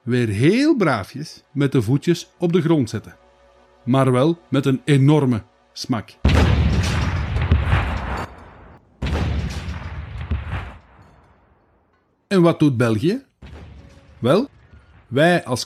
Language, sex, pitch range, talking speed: Dutch, male, 110-175 Hz, 90 wpm